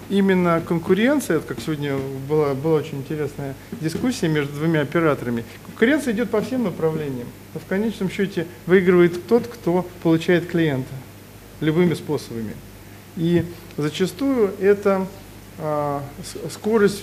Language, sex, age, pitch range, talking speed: Russian, male, 40-59, 150-195 Hz, 115 wpm